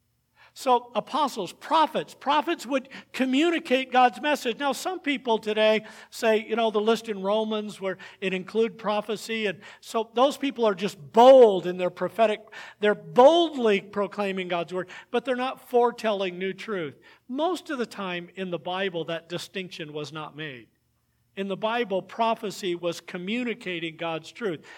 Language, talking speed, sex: English, 155 wpm, male